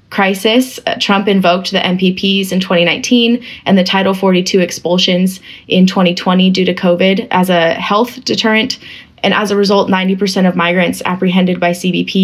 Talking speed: 150 wpm